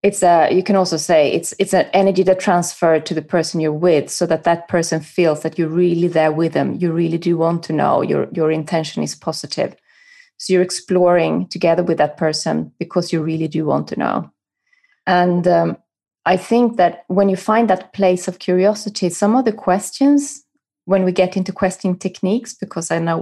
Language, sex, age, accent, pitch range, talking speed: English, female, 30-49, Swedish, 175-205 Hz, 200 wpm